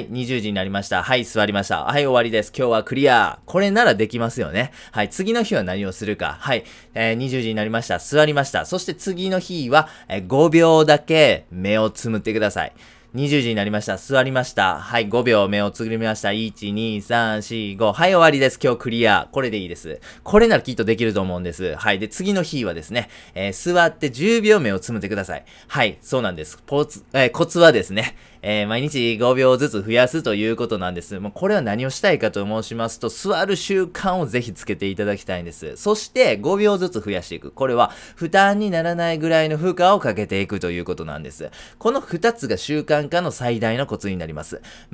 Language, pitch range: Japanese, 105-155 Hz